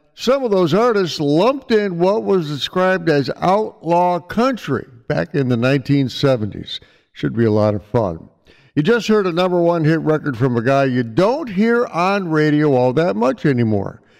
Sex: male